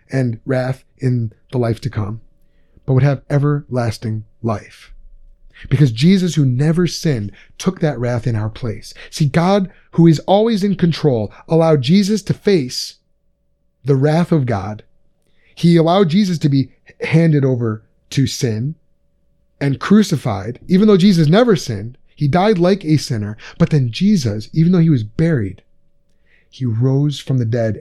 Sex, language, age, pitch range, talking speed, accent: male, English, 30-49, 125-175 Hz, 155 wpm, American